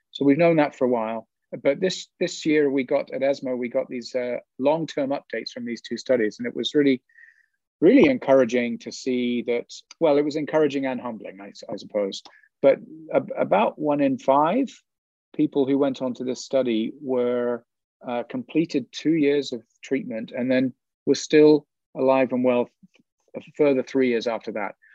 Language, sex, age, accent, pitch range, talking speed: English, male, 40-59, British, 120-145 Hz, 185 wpm